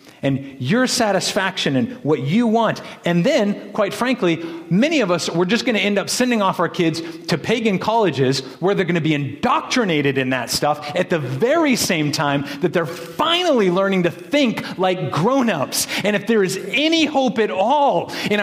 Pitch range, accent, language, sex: 145-210 Hz, American, English, male